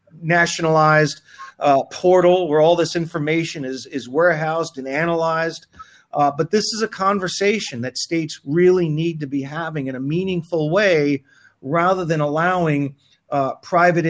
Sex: male